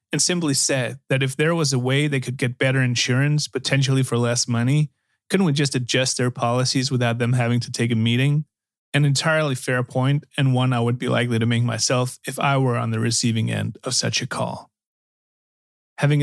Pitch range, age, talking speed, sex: 120-140 Hz, 30-49, 205 wpm, male